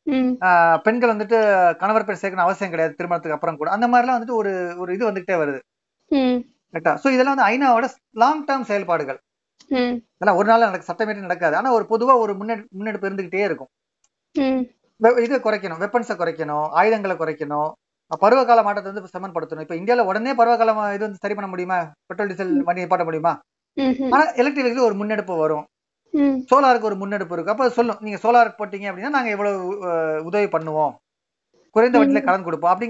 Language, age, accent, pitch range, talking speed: Tamil, 30-49, native, 180-245 Hz, 60 wpm